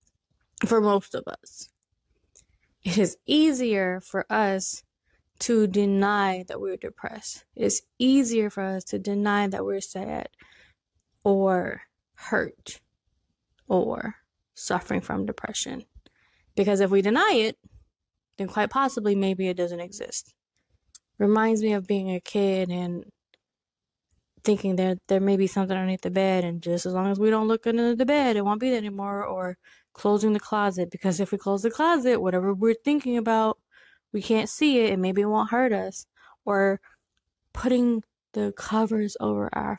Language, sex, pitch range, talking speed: English, female, 185-220 Hz, 155 wpm